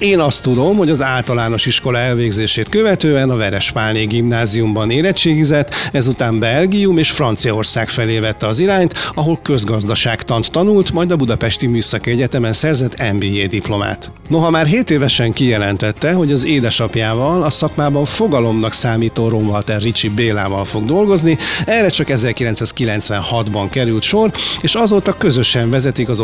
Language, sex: Hungarian, male